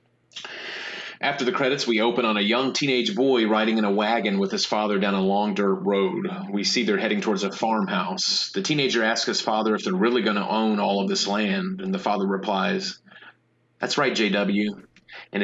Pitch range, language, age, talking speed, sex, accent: 105-130 Hz, English, 30-49, 200 wpm, male, American